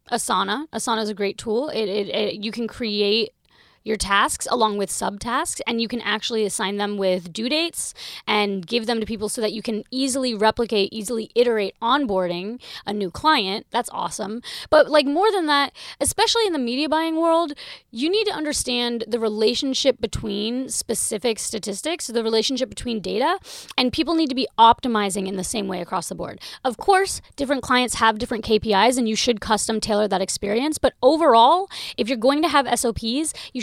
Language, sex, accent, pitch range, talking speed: English, female, American, 210-260 Hz, 185 wpm